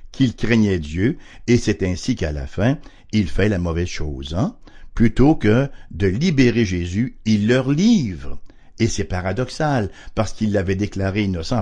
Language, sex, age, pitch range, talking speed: English, male, 60-79, 90-125 Hz, 160 wpm